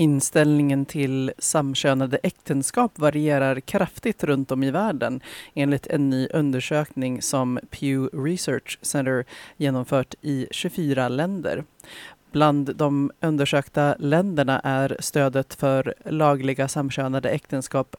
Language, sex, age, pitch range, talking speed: Swedish, female, 30-49, 135-155 Hz, 105 wpm